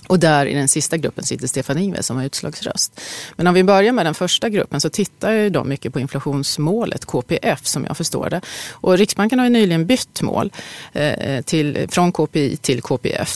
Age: 30-49